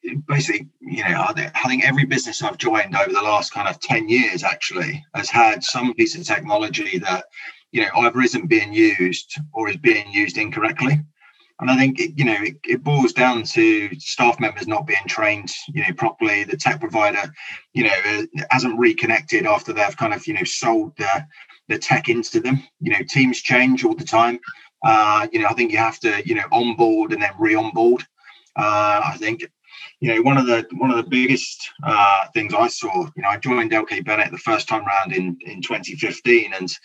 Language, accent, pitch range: English, British, 115-175 Hz